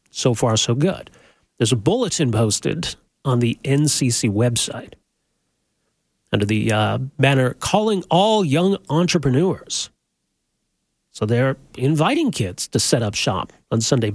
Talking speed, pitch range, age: 125 wpm, 120-170 Hz, 40-59